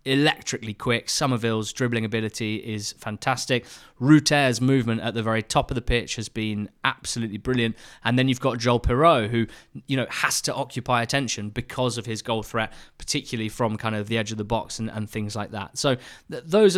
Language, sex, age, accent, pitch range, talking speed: English, male, 20-39, British, 115-135 Hz, 195 wpm